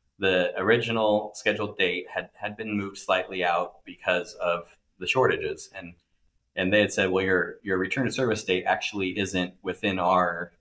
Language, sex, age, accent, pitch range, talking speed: English, male, 20-39, American, 85-105 Hz, 160 wpm